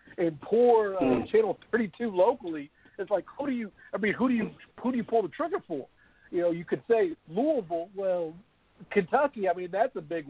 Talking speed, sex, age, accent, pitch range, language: 210 wpm, male, 50-69, American, 150-215 Hz, English